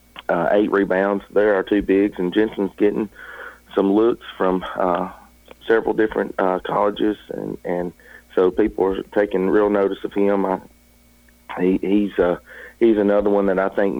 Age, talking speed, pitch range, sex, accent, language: 40-59, 165 wpm, 90-100 Hz, male, American, English